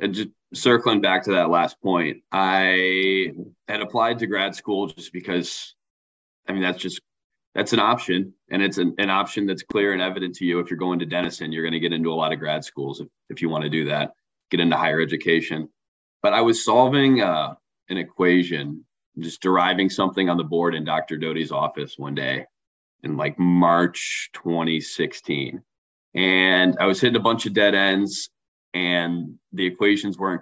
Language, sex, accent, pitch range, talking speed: English, male, American, 85-100 Hz, 185 wpm